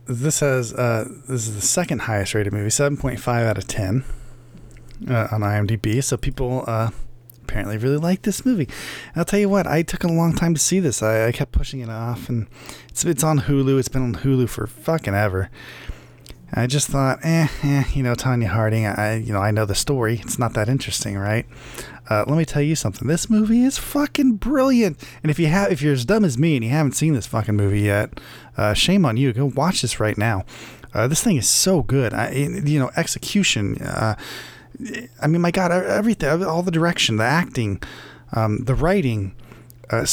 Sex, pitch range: male, 115-160 Hz